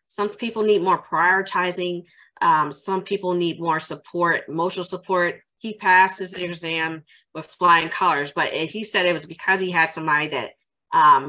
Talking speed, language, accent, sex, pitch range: 170 wpm, English, American, female, 155-185 Hz